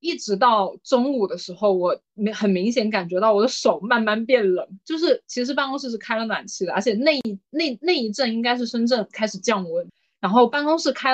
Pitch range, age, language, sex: 200-270 Hz, 20-39, Chinese, female